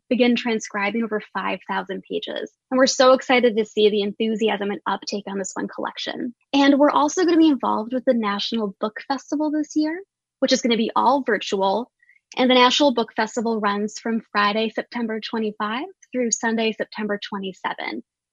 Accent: American